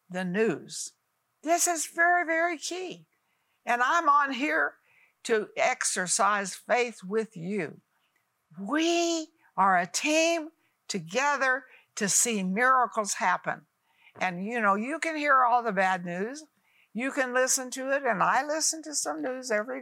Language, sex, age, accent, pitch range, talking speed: English, female, 60-79, American, 190-275 Hz, 140 wpm